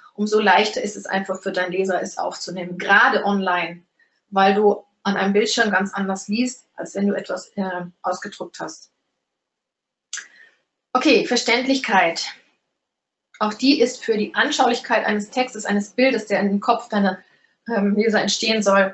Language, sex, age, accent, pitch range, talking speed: German, female, 30-49, German, 200-245 Hz, 150 wpm